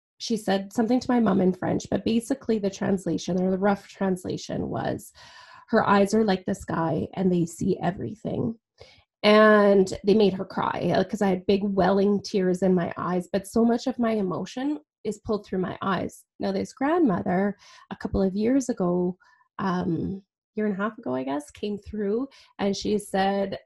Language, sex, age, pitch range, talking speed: English, female, 20-39, 190-230 Hz, 185 wpm